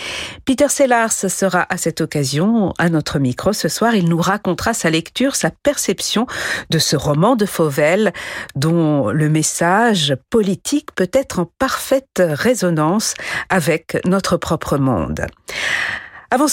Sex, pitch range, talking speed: female, 155-200 Hz, 135 wpm